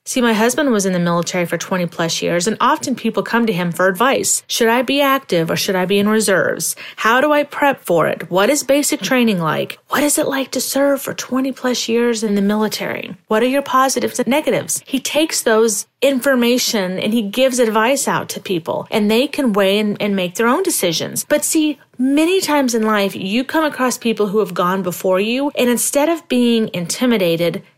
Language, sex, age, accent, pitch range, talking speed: English, female, 30-49, American, 195-280 Hz, 215 wpm